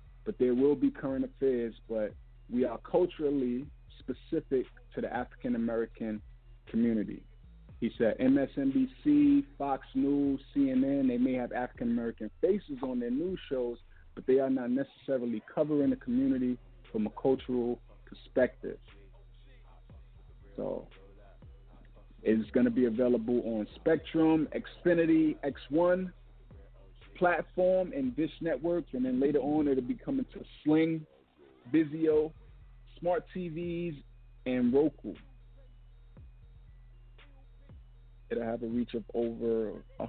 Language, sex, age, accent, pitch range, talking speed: English, male, 50-69, American, 115-160 Hz, 115 wpm